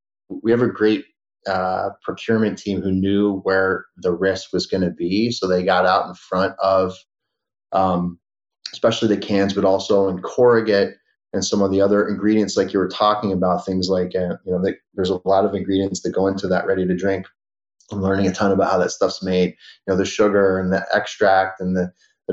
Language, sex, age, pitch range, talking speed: English, male, 30-49, 95-100 Hz, 210 wpm